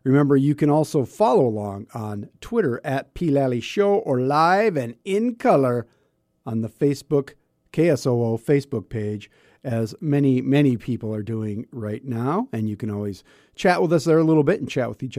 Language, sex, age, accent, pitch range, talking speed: English, male, 50-69, American, 115-145 Hz, 180 wpm